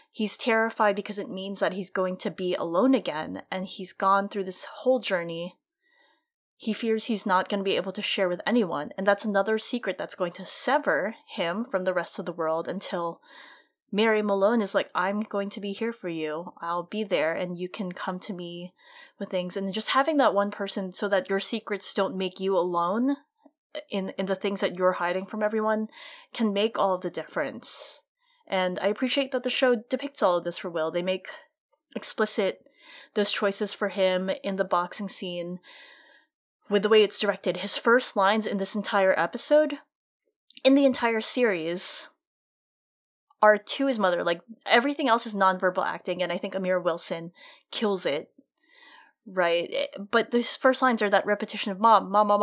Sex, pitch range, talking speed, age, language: female, 190-245 Hz, 190 wpm, 20-39, English